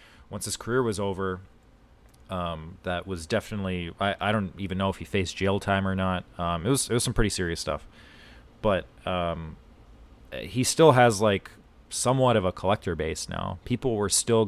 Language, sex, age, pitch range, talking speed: English, male, 30-49, 90-110 Hz, 185 wpm